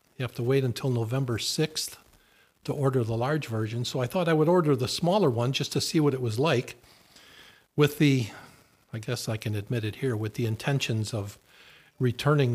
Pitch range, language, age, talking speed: 120-150 Hz, English, 50-69, 200 wpm